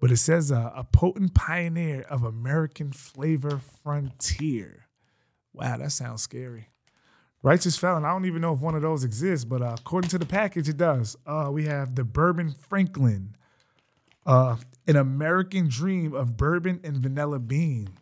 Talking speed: 165 wpm